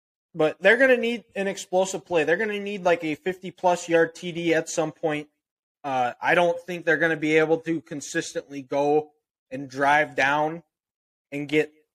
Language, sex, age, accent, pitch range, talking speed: English, male, 20-39, American, 150-185 Hz, 190 wpm